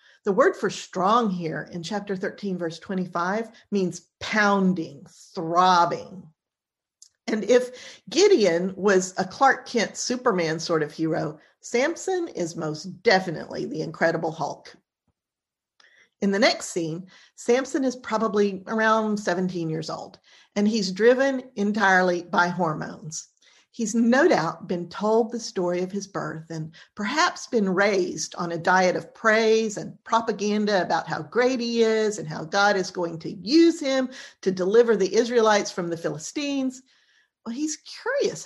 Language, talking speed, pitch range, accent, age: English, 145 wpm, 175-230 Hz, American, 50-69